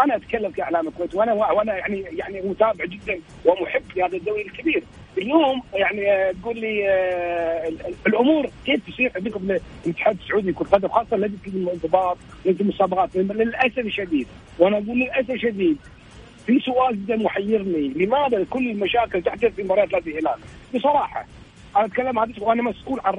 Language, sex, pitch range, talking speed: Arabic, male, 180-250 Hz, 150 wpm